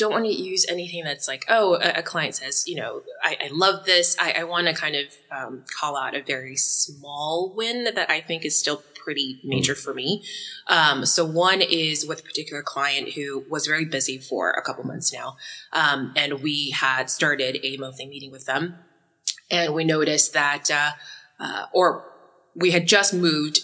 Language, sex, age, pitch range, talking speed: English, female, 20-39, 140-165 Hz, 195 wpm